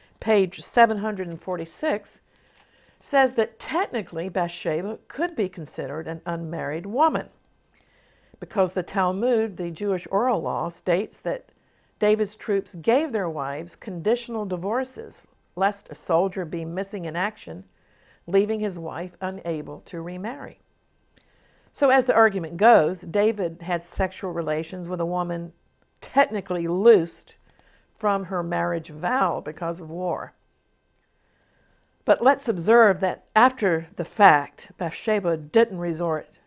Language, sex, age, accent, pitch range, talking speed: English, female, 50-69, American, 170-220 Hz, 120 wpm